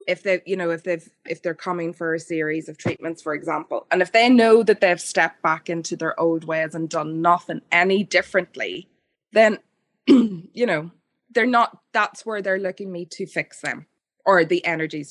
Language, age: English, 20-39